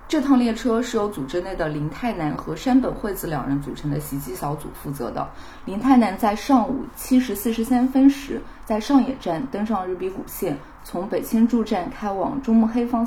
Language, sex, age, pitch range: Chinese, female, 20-39, 175-245 Hz